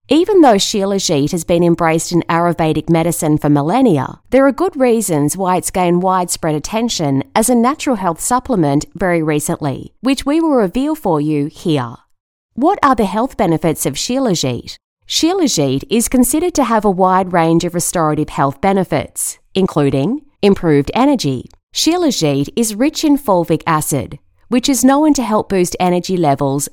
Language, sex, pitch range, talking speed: English, female, 150-240 Hz, 155 wpm